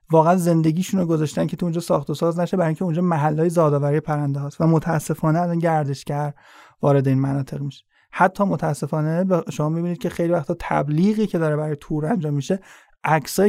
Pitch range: 150-180 Hz